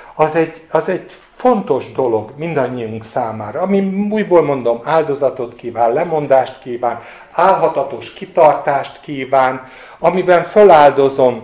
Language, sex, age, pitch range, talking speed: Hungarian, male, 50-69, 110-145 Hz, 105 wpm